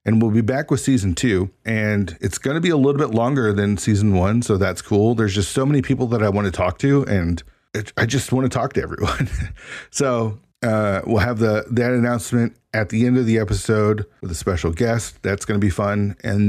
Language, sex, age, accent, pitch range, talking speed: English, male, 40-59, American, 100-125 Hz, 235 wpm